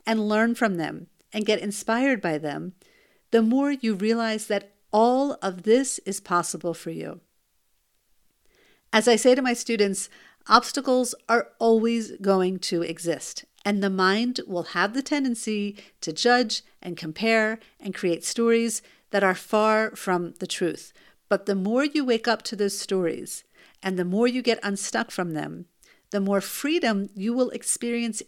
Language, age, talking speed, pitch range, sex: English, 50-69, 160 wpm, 185-235 Hz, female